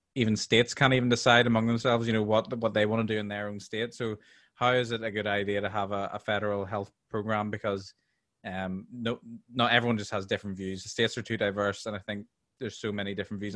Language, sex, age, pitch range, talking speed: English, male, 20-39, 100-115 Hz, 245 wpm